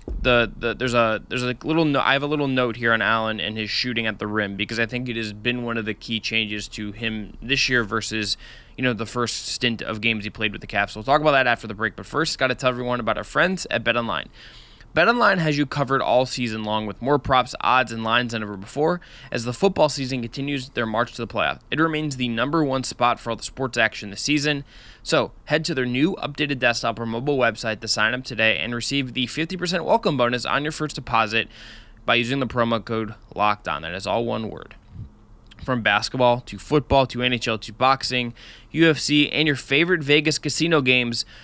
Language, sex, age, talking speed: English, male, 20-39, 230 wpm